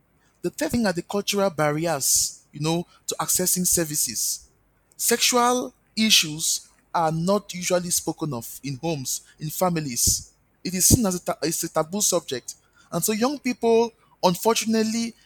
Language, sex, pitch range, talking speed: English, male, 150-200 Hz, 140 wpm